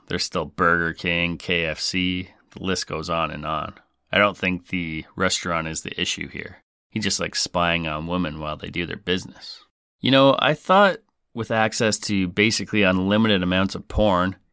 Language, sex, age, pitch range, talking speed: English, male, 30-49, 90-110 Hz, 180 wpm